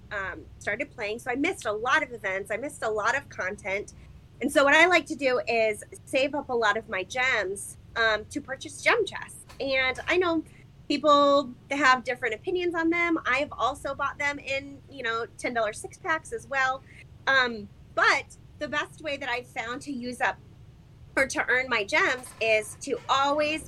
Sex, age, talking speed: female, 20-39, 195 wpm